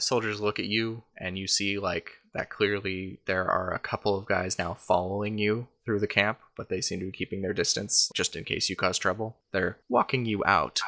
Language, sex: English, male